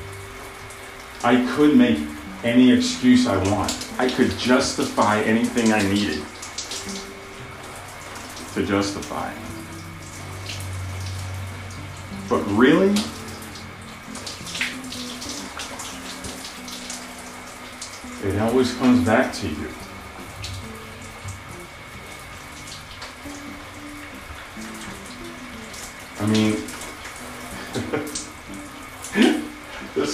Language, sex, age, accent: English, male, 40-59, American